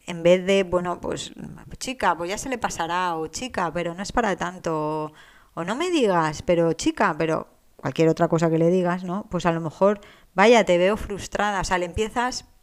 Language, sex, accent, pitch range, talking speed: Spanish, female, Spanish, 175-220 Hz, 215 wpm